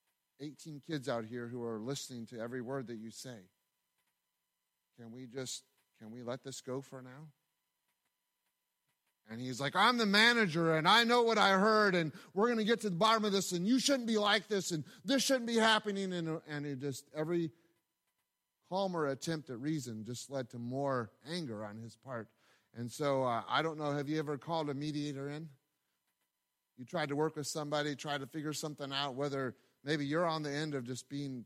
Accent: American